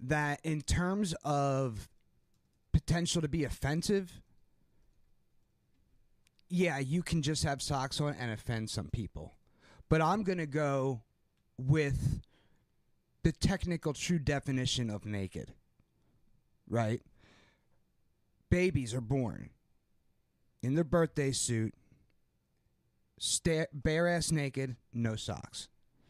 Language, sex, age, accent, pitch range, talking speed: English, male, 30-49, American, 120-155 Hz, 105 wpm